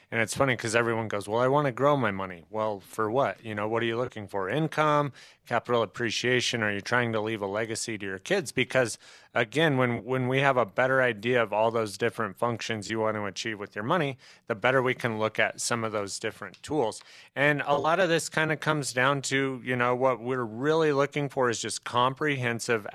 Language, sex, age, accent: English, male, 30-49, American